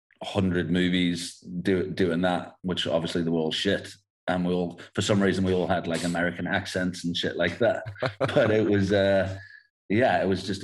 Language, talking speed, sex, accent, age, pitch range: English, 190 wpm, male, British, 30-49, 85-95 Hz